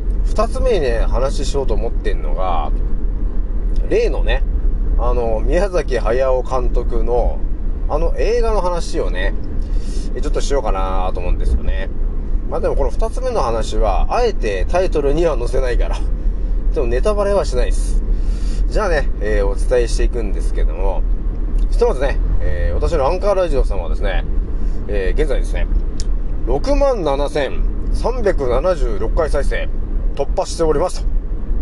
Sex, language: male, Japanese